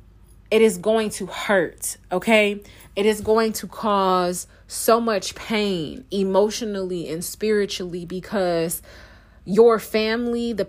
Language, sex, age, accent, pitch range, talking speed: English, female, 20-39, American, 190-220 Hz, 120 wpm